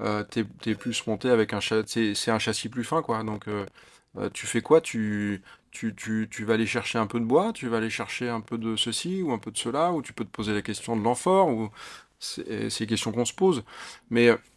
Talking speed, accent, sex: 250 wpm, French, male